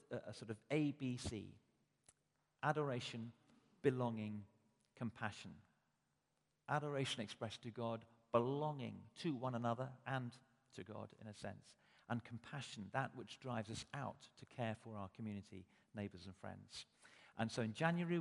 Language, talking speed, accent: English, 135 wpm, British